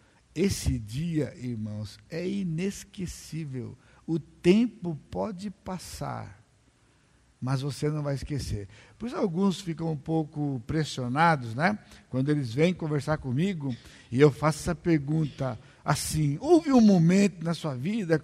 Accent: Brazilian